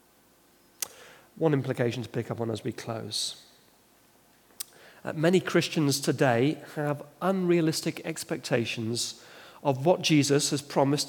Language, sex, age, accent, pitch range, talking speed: English, male, 40-59, British, 130-165 Hz, 115 wpm